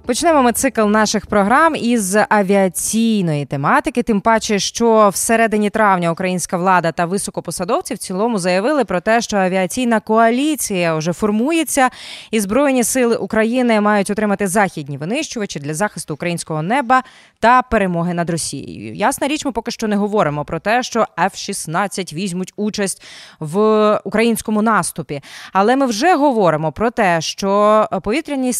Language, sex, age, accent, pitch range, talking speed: Ukrainian, female, 20-39, native, 185-250 Hz, 145 wpm